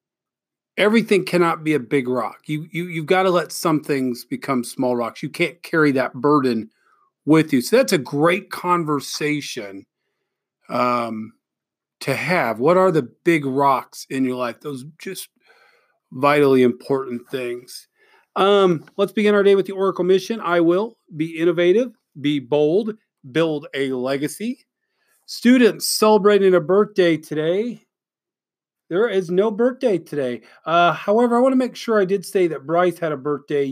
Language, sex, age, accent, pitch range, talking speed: English, male, 40-59, American, 140-190 Hz, 160 wpm